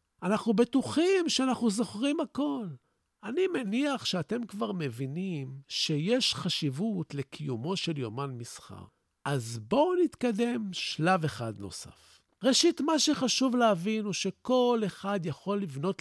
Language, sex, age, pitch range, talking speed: Hebrew, male, 50-69, 150-230 Hz, 115 wpm